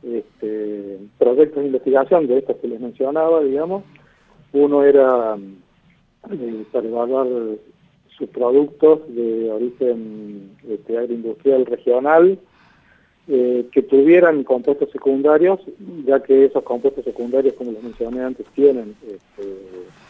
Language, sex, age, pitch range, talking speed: Spanish, male, 40-59, 110-140 Hz, 115 wpm